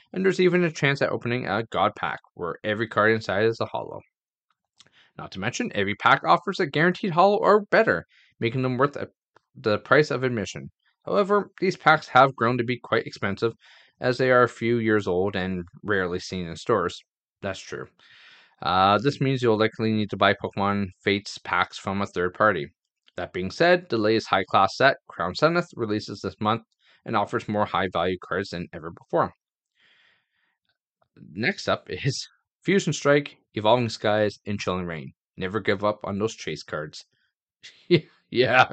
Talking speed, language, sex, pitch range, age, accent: 170 wpm, English, male, 100-130 Hz, 20-39, American